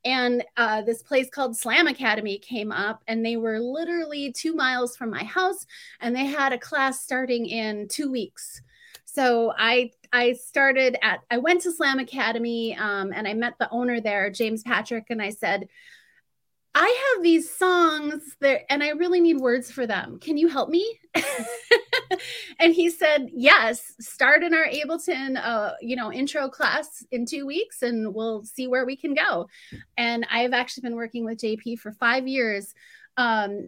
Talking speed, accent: 175 wpm, American